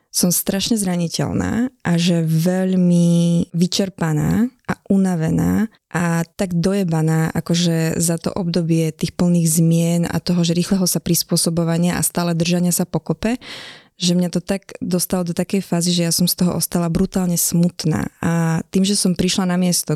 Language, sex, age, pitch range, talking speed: Slovak, female, 20-39, 165-195 Hz, 160 wpm